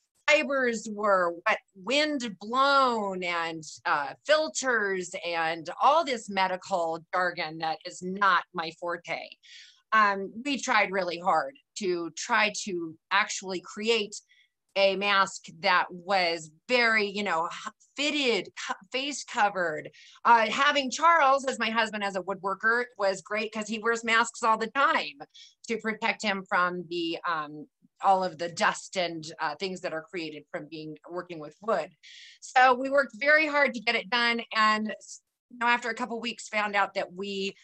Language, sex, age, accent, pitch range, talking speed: English, female, 30-49, American, 180-235 Hz, 155 wpm